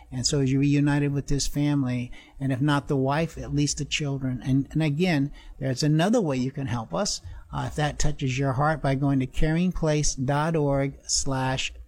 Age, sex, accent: 60-79, male, American